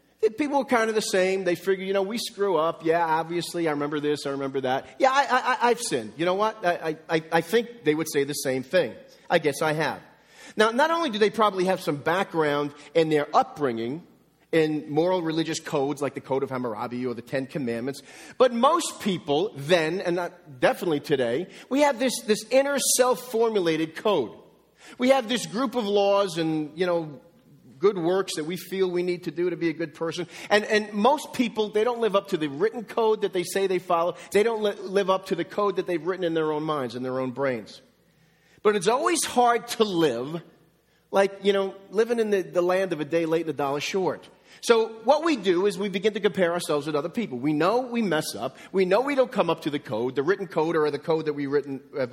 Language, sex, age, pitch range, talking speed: English, male, 40-59, 155-220 Hz, 230 wpm